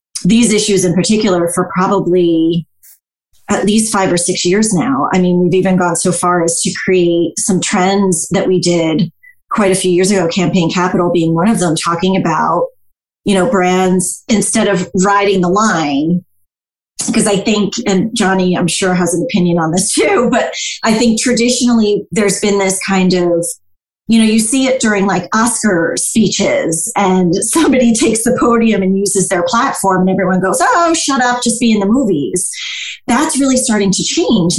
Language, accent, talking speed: English, American, 180 wpm